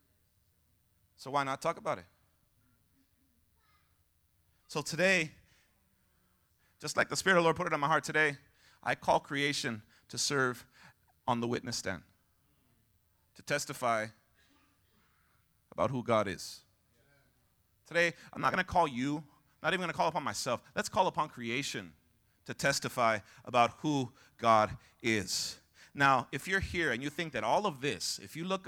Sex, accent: male, American